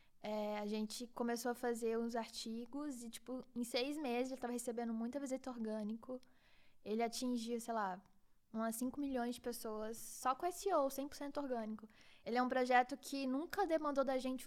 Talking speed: 175 wpm